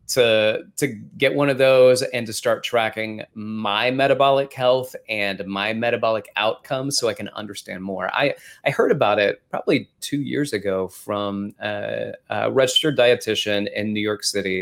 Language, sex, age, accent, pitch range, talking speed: English, male, 30-49, American, 105-135 Hz, 165 wpm